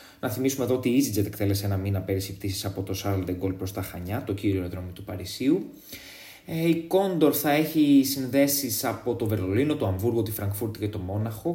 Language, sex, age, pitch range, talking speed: Greek, male, 20-39, 100-150 Hz, 205 wpm